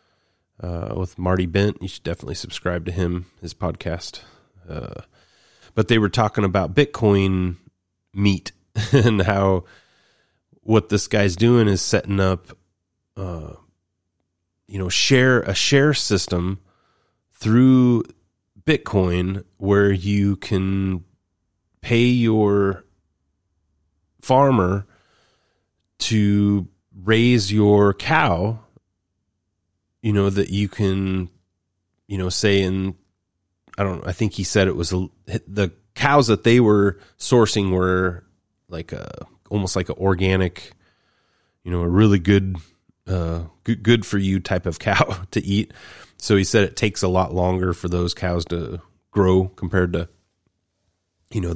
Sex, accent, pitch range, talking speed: male, American, 90-105 Hz, 130 wpm